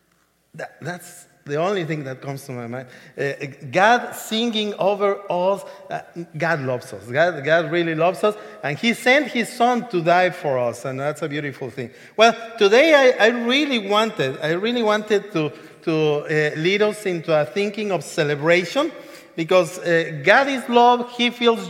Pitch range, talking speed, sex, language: 160-220 Hz, 175 wpm, male, English